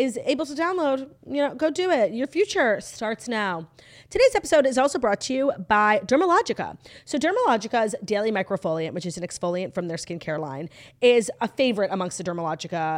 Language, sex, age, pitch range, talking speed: English, female, 30-49, 180-235 Hz, 185 wpm